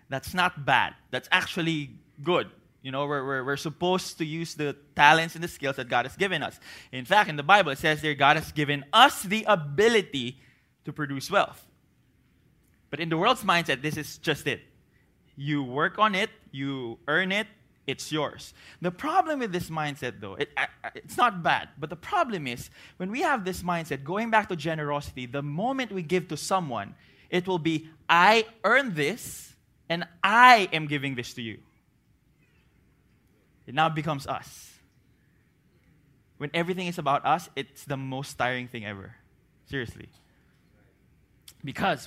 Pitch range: 135-175 Hz